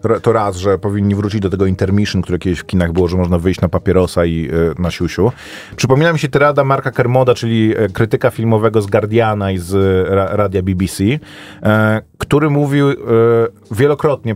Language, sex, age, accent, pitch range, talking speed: Polish, male, 40-59, native, 100-135 Hz, 185 wpm